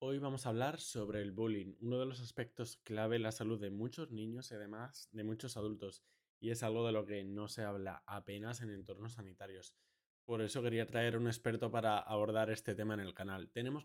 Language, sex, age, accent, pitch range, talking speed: Spanish, male, 20-39, Spanish, 105-120 Hz, 215 wpm